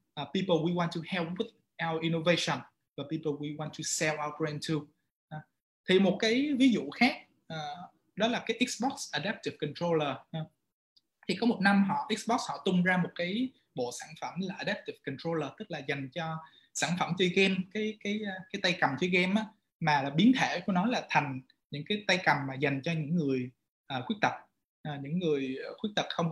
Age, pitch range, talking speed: 20-39, 150-205 Hz, 195 wpm